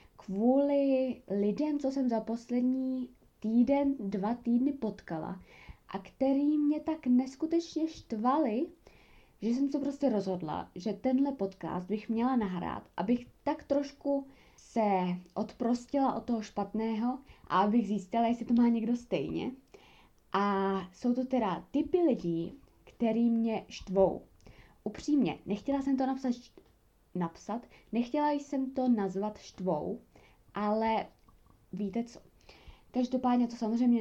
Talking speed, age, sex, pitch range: 120 wpm, 20-39, female, 200-265 Hz